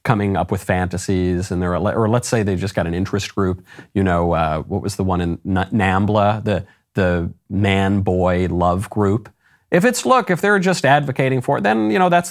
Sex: male